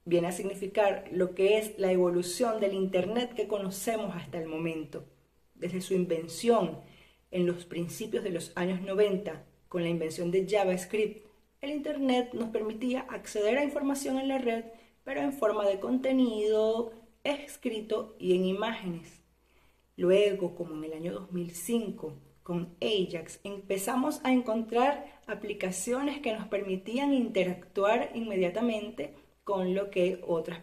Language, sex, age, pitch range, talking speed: English, female, 30-49, 175-220 Hz, 135 wpm